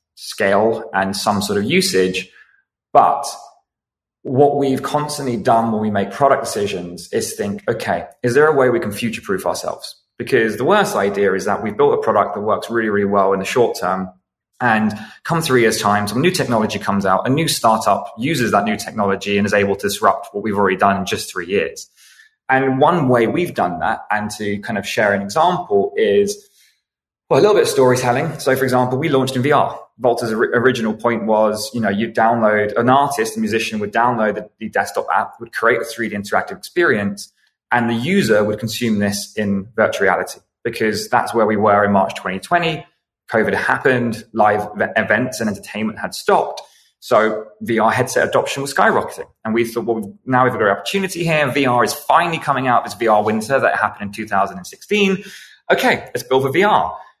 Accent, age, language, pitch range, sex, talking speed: British, 20-39, English, 105-140 Hz, male, 195 wpm